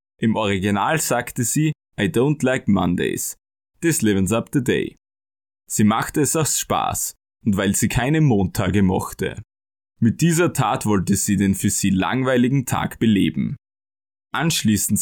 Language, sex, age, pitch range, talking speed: German, male, 20-39, 100-145 Hz, 145 wpm